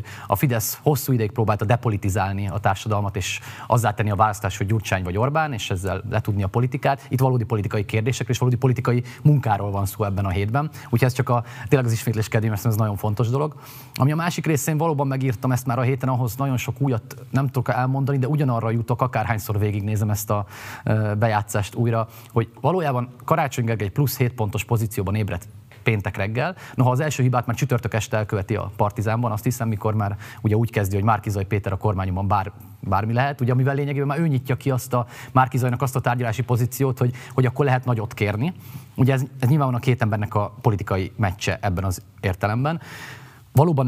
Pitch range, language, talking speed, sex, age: 105-130 Hz, Hungarian, 195 wpm, male, 30-49